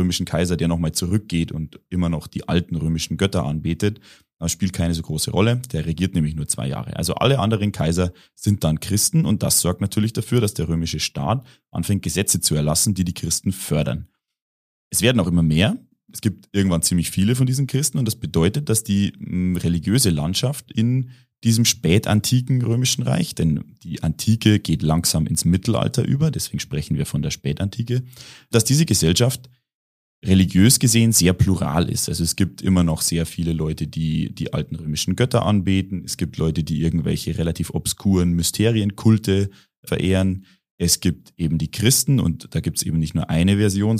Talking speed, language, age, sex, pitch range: 180 wpm, German, 30-49, male, 85-110 Hz